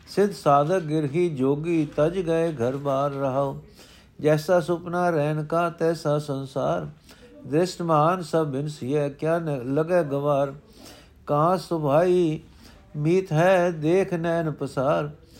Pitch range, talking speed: 140-170 Hz, 115 wpm